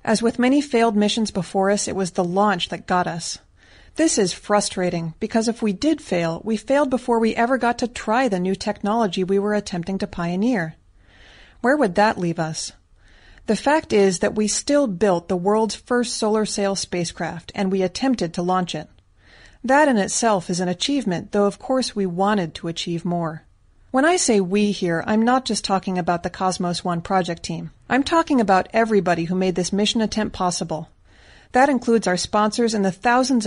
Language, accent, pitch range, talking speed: English, American, 180-230 Hz, 195 wpm